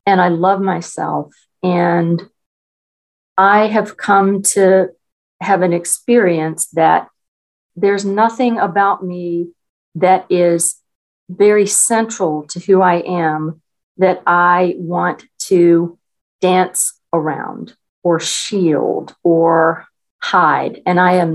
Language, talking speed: English, 105 wpm